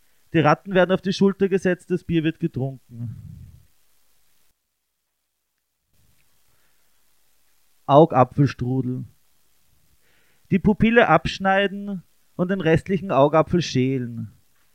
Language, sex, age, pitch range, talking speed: German, male, 30-49, 130-185 Hz, 80 wpm